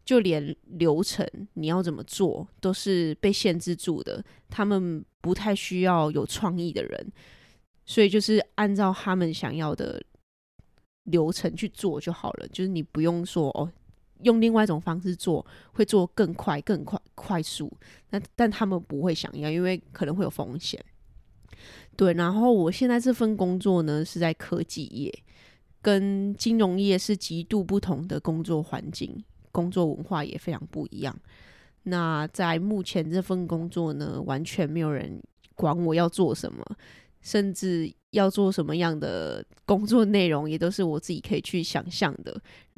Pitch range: 165-205 Hz